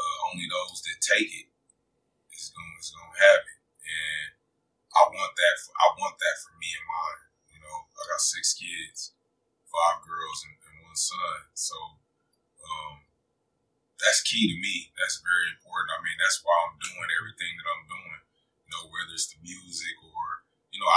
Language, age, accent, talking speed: English, 20-39, American, 170 wpm